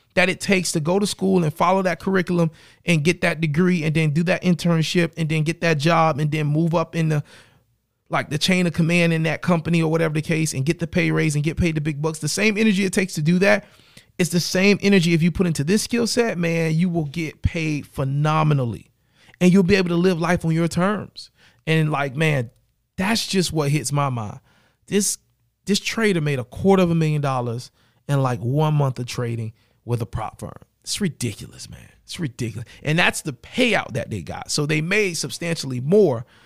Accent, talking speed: American, 220 wpm